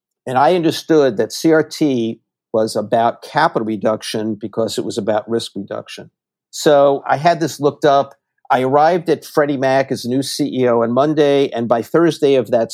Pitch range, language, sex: 115-140 Hz, English, male